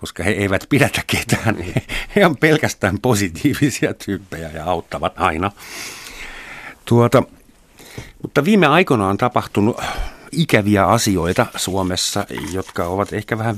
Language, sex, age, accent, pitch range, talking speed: Finnish, male, 50-69, native, 85-110 Hz, 115 wpm